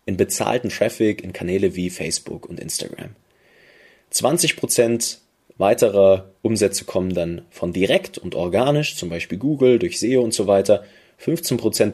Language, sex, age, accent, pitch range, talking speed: German, male, 30-49, German, 95-120 Hz, 135 wpm